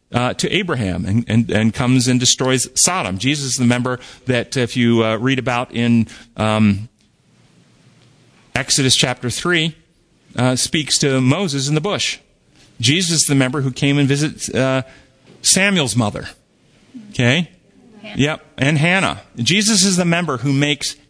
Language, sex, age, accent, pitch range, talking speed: English, male, 40-59, American, 120-155 Hz, 150 wpm